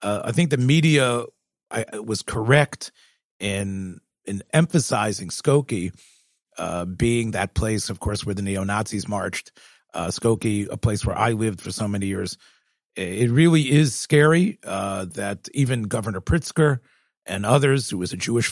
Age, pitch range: 40-59, 105-140 Hz